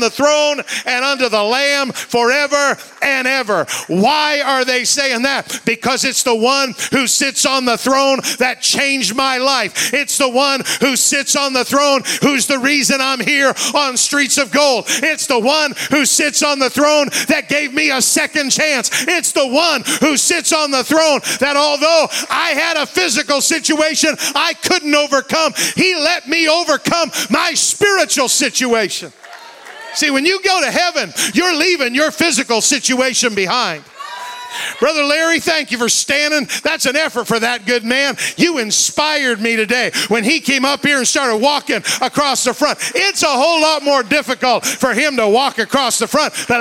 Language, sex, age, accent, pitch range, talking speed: English, male, 50-69, American, 265-315 Hz, 175 wpm